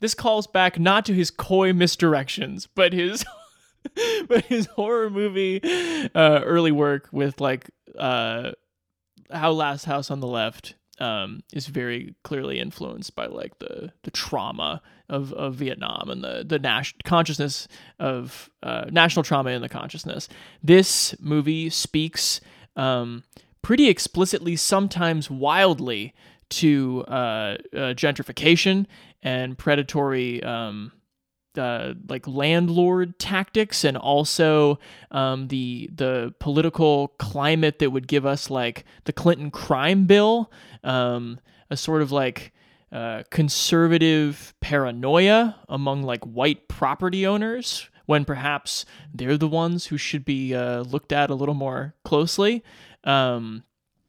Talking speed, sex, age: 130 wpm, male, 20-39